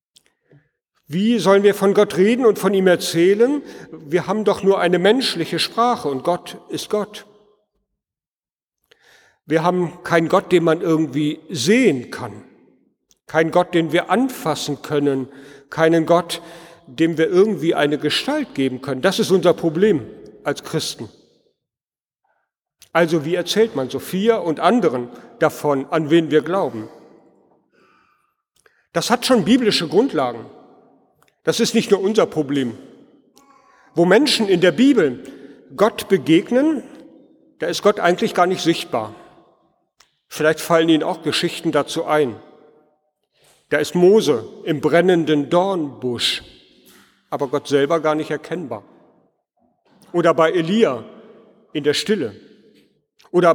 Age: 50-69